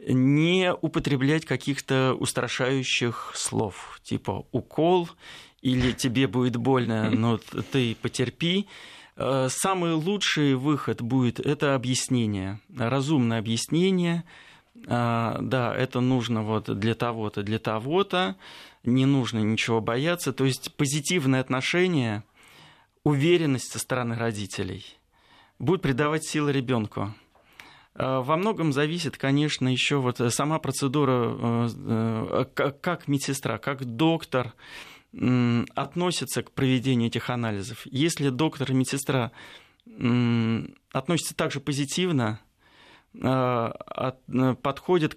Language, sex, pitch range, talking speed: Russian, male, 120-150 Hz, 95 wpm